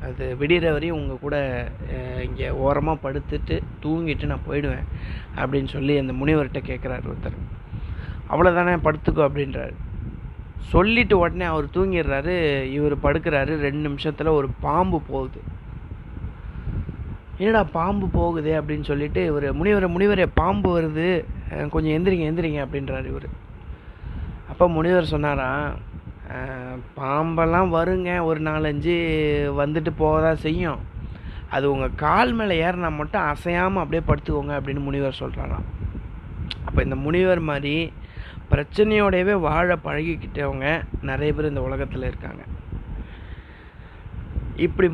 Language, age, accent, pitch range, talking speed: Tamil, 30-49, native, 135-165 Hz, 110 wpm